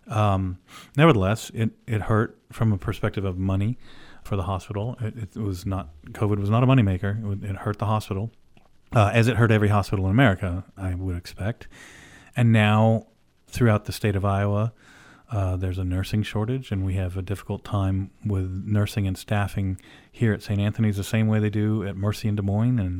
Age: 40-59